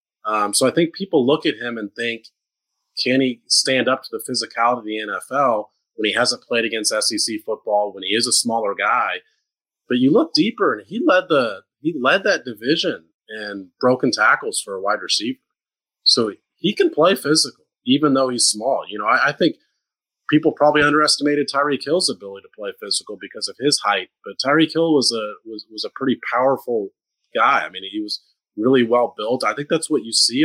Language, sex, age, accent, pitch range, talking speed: English, male, 30-49, American, 115-160 Hz, 205 wpm